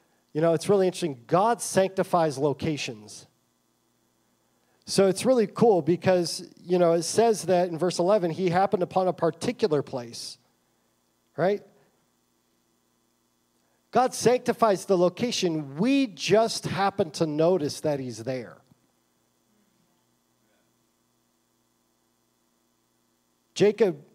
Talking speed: 100 wpm